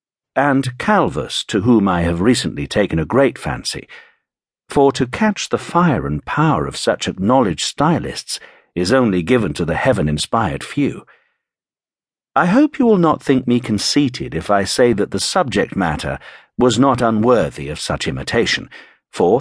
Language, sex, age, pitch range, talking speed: English, male, 60-79, 95-130 Hz, 160 wpm